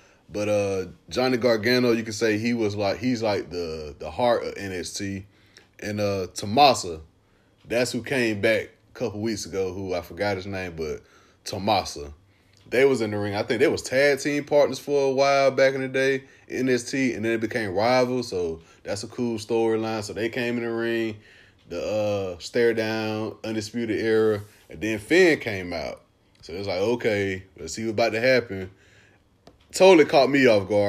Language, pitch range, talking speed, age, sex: English, 100-125 Hz, 190 wpm, 20-39, male